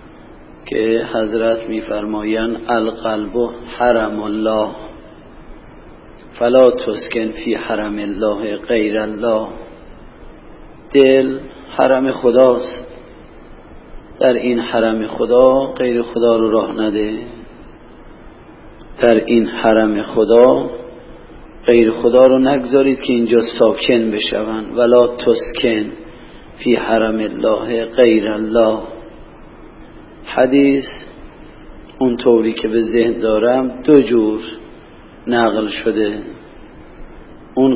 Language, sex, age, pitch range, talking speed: Persian, male, 40-59, 110-130 Hz, 90 wpm